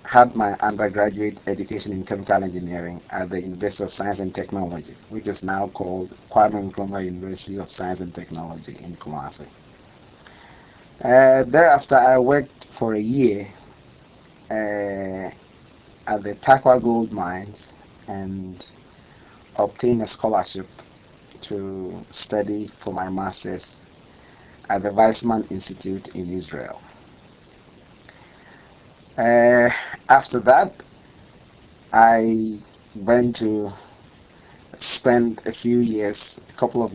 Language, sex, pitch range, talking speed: English, male, 95-115 Hz, 110 wpm